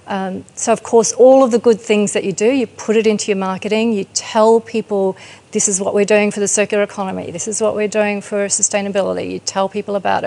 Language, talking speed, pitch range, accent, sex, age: English, 240 wpm, 190-215 Hz, Australian, female, 40-59